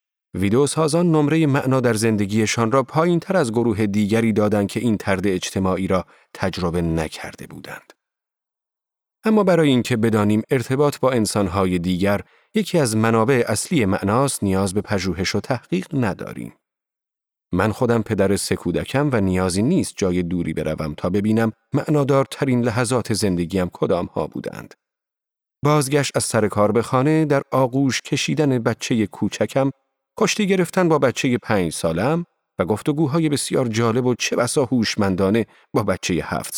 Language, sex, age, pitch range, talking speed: Persian, male, 40-59, 95-140 Hz, 140 wpm